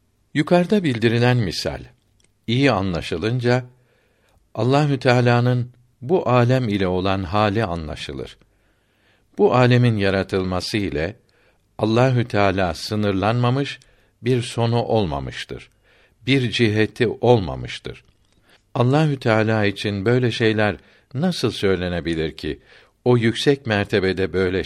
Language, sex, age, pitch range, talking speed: Turkish, male, 60-79, 100-125 Hz, 90 wpm